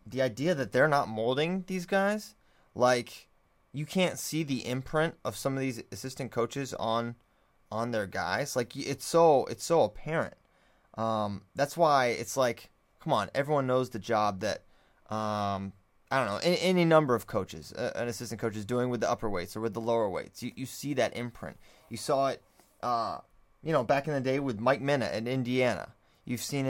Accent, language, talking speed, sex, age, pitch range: American, English, 200 wpm, male, 20-39, 115-145 Hz